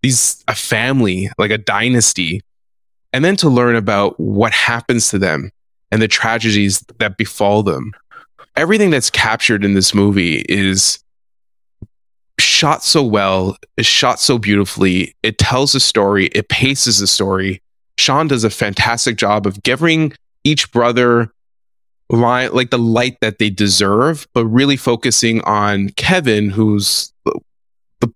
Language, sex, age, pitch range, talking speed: English, male, 20-39, 100-125 Hz, 140 wpm